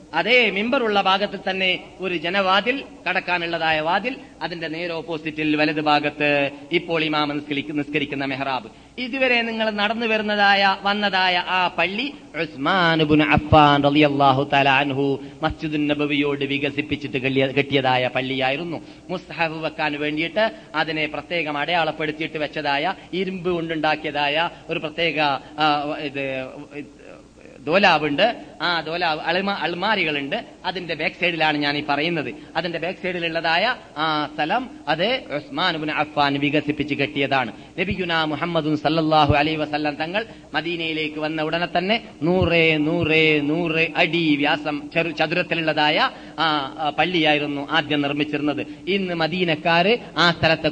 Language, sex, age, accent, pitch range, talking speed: Malayalam, male, 30-49, native, 145-175 Hz, 85 wpm